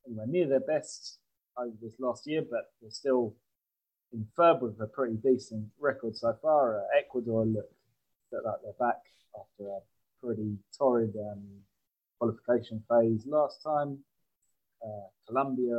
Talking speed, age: 150 wpm, 20-39